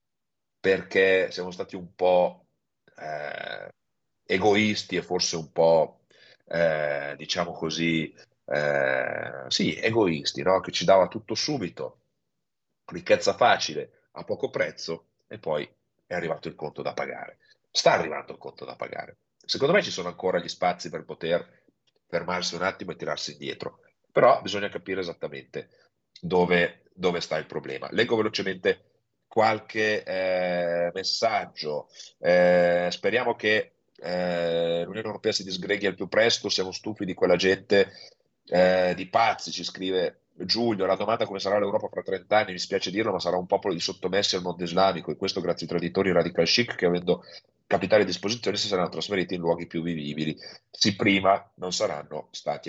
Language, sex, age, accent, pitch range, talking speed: Italian, male, 40-59, native, 85-105 Hz, 155 wpm